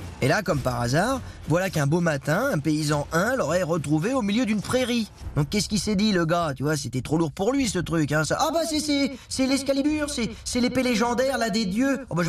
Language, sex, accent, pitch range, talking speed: French, male, French, 135-200 Hz, 255 wpm